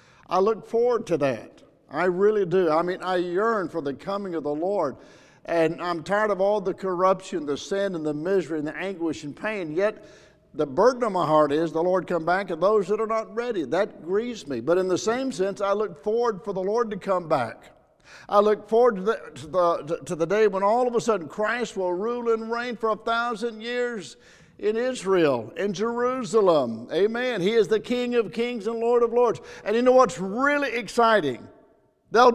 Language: English